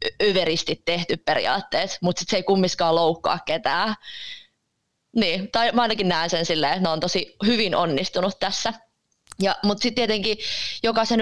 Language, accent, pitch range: Finnish, native, 170-225 Hz